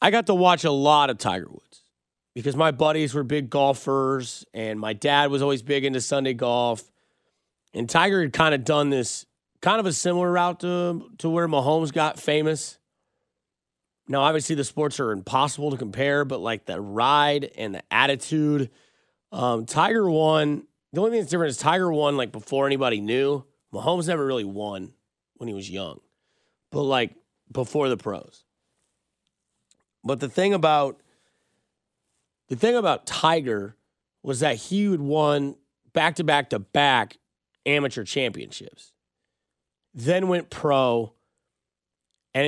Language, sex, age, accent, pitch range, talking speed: English, male, 30-49, American, 125-160 Hz, 150 wpm